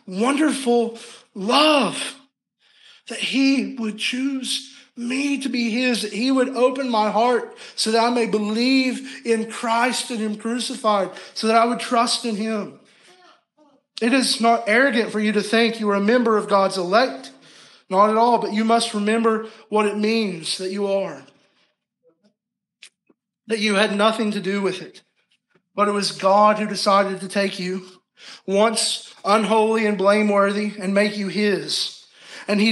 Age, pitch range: 40-59, 195-235 Hz